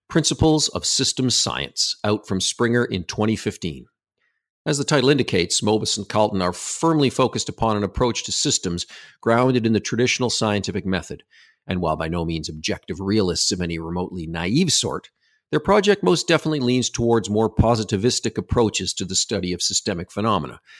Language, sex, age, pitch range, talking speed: English, male, 50-69, 95-125 Hz, 165 wpm